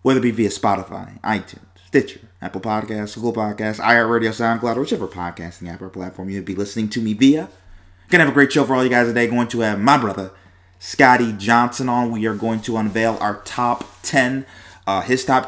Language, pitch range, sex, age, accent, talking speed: English, 100-140 Hz, male, 30-49, American, 210 wpm